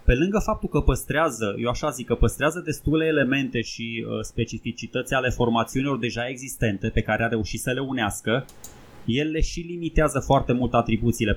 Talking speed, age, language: 165 wpm, 20-39, Romanian